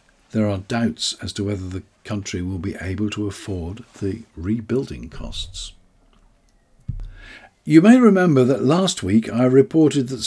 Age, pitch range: 50-69, 110-150 Hz